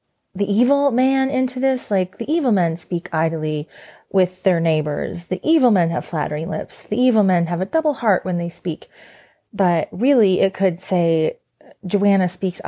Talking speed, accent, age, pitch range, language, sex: 175 wpm, American, 30-49, 180-215 Hz, English, female